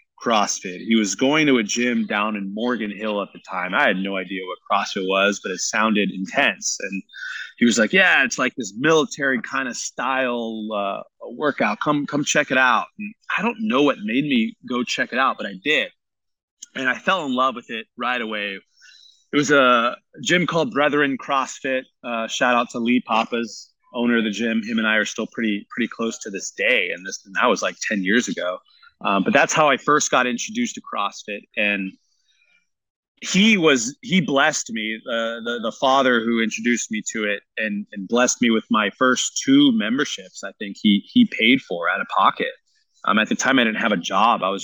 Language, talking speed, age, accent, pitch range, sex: English, 210 wpm, 30-49, American, 110-150 Hz, male